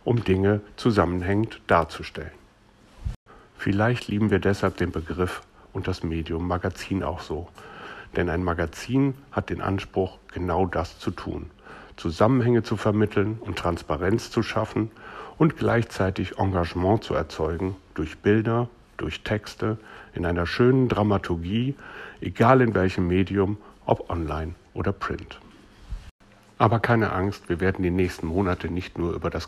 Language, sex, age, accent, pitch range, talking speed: German, male, 60-79, German, 90-110 Hz, 135 wpm